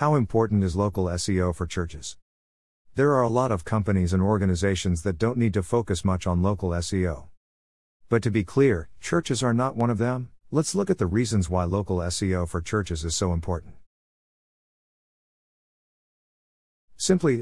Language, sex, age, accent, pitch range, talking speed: English, male, 50-69, American, 85-115 Hz, 165 wpm